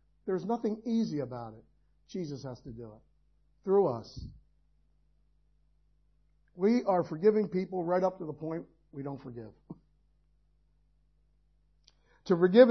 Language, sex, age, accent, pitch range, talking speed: English, male, 50-69, American, 155-220 Hz, 125 wpm